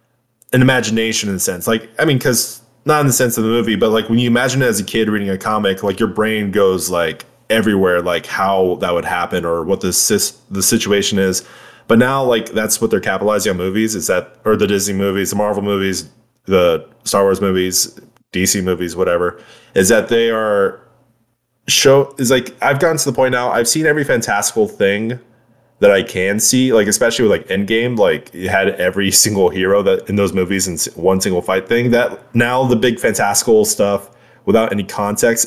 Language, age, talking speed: English, 20-39, 205 wpm